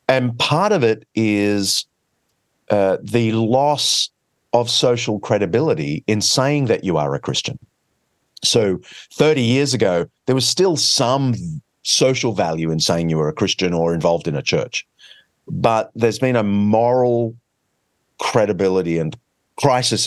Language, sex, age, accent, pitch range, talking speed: English, male, 40-59, Australian, 105-145 Hz, 140 wpm